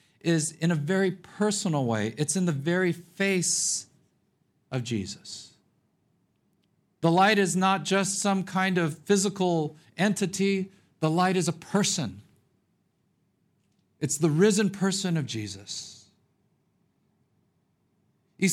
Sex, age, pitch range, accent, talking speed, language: male, 50-69, 160-200 Hz, American, 115 wpm, English